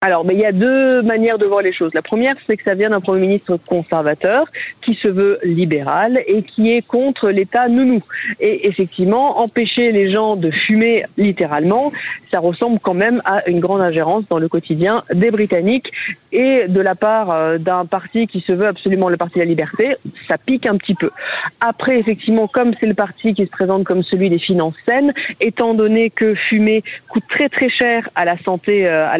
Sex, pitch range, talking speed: female, 185-235 Hz, 200 wpm